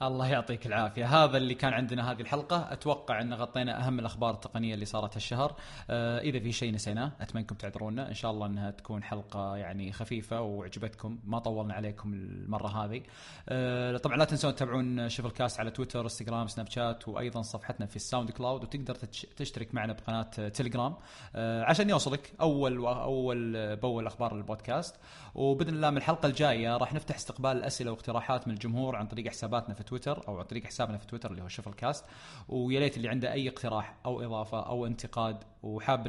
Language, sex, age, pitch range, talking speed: Arabic, male, 20-39, 110-130 Hz, 175 wpm